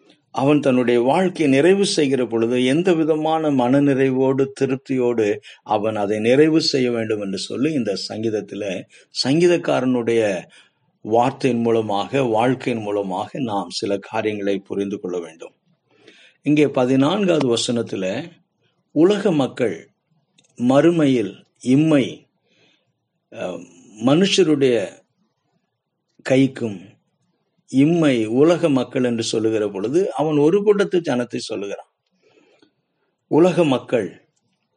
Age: 50-69